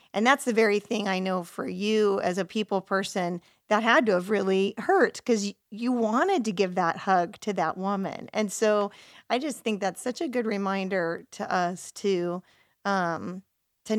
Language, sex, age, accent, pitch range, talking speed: English, female, 40-59, American, 185-215 Hz, 190 wpm